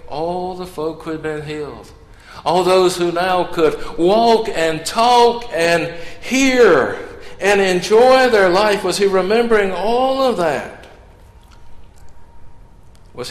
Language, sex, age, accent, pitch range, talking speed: English, male, 60-79, American, 150-215 Hz, 125 wpm